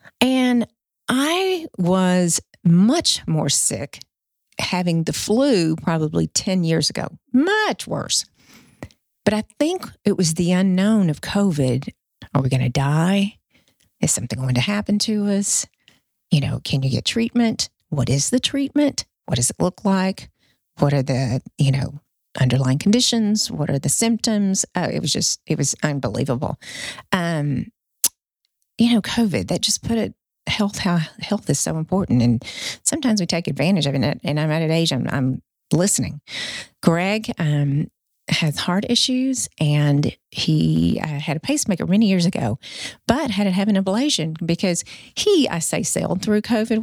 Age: 40-59